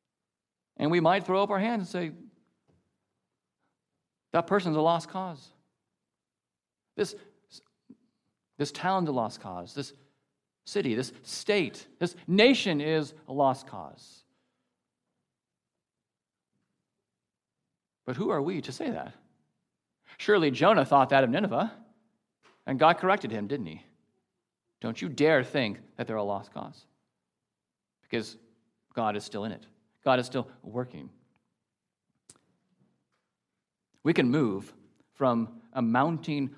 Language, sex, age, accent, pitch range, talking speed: English, male, 50-69, American, 125-180 Hz, 120 wpm